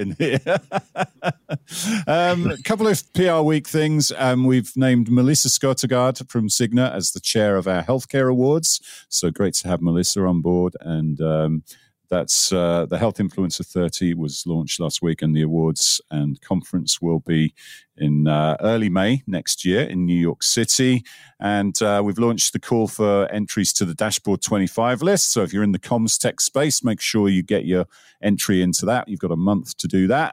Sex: male